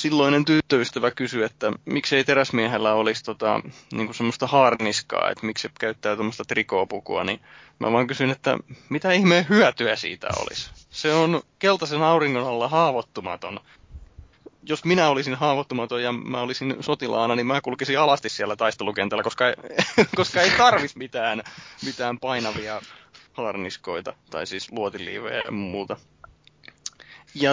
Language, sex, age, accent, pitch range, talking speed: Finnish, male, 20-39, native, 110-145 Hz, 135 wpm